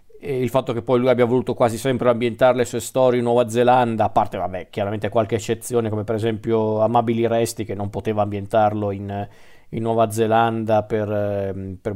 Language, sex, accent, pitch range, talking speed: Italian, male, native, 110-130 Hz, 185 wpm